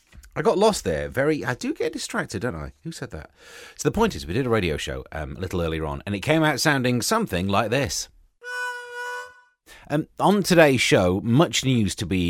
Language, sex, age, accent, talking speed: English, male, 30-49, British, 215 wpm